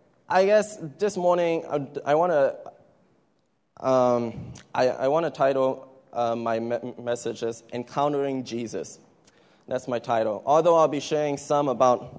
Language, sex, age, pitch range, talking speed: English, male, 20-39, 125-150 Hz, 150 wpm